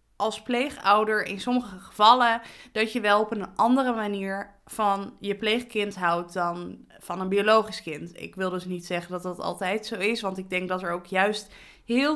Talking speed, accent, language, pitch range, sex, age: 190 wpm, Dutch, Dutch, 195-230 Hz, female, 20-39